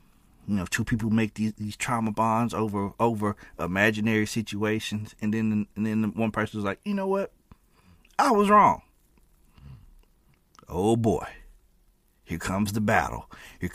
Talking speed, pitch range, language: 145 wpm, 90-135 Hz, English